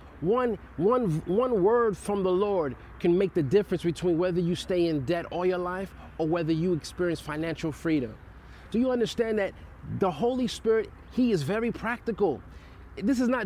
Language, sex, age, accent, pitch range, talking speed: English, male, 30-49, American, 170-215 Hz, 180 wpm